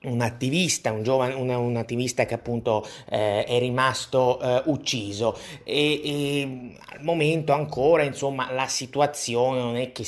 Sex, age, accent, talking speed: male, 30-49, native, 150 wpm